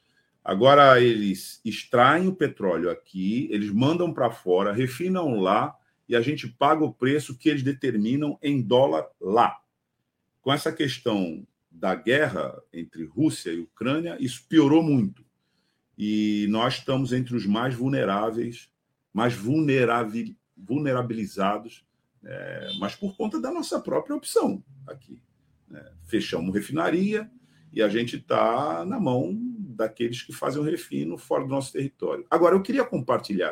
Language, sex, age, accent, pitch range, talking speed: Portuguese, male, 50-69, Brazilian, 120-155 Hz, 135 wpm